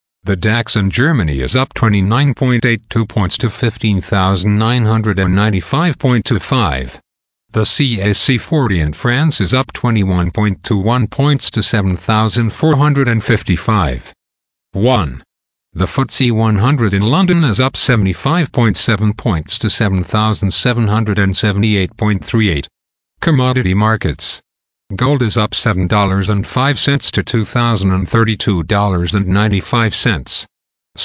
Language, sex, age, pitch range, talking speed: English, male, 50-69, 95-120 Hz, 75 wpm